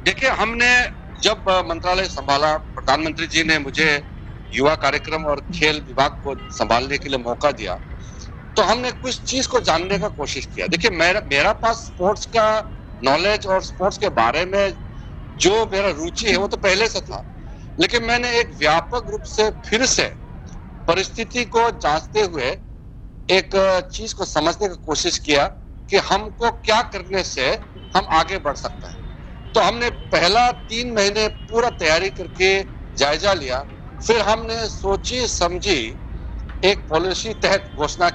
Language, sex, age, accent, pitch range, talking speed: Hindi, male, 60-79, native, 145-210 Hz, 150 wpm